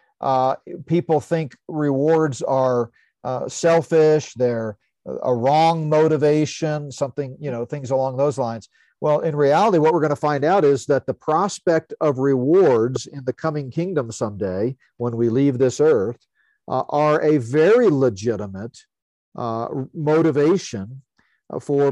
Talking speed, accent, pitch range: 140 wpm, American, 125-155 Hz